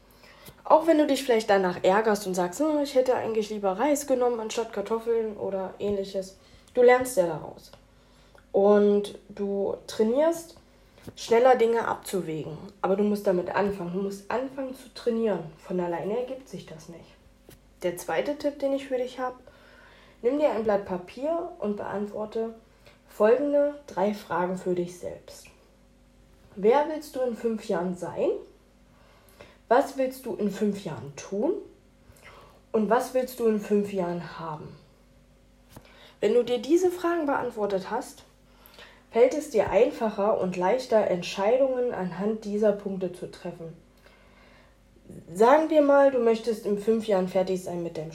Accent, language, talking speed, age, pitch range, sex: German, German, 150 wpm, 20-39, 190-255 Hz, female